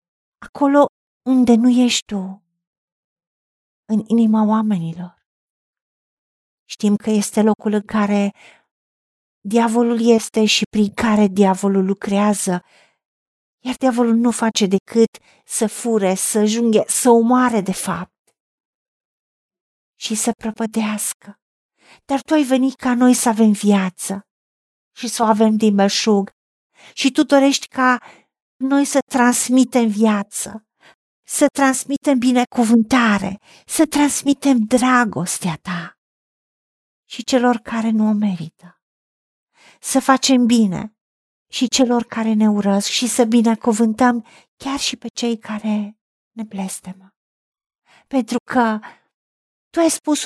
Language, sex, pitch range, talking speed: Romanian, female, 205-250 Hz, 115 wpm